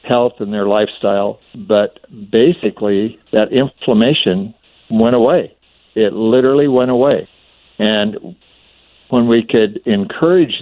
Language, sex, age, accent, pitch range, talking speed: English, male, 60-79, American, 105-135 Hz, 105 wpm